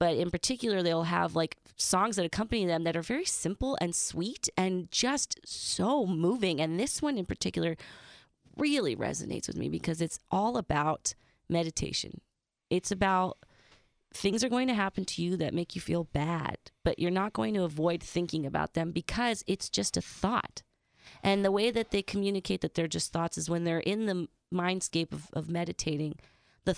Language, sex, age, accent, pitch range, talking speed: English, female, 30-49, American, 165-200 Hz, 185 wpm